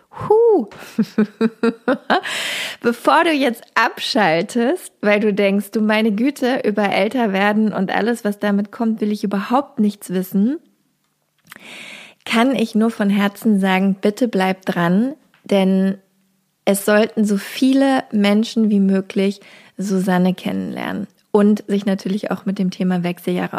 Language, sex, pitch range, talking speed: German, female, 190-225 Hz, 125 wpm